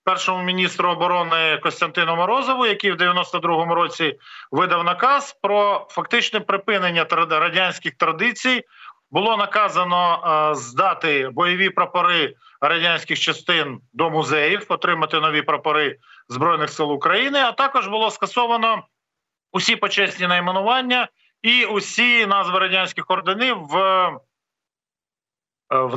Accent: native